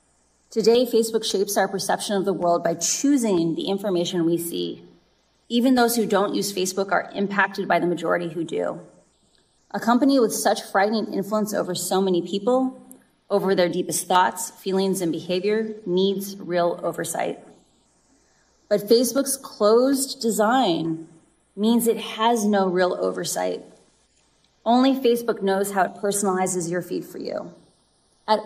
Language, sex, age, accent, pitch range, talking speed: English, female, 30-49, American, 185-230 Hz, 145 wpm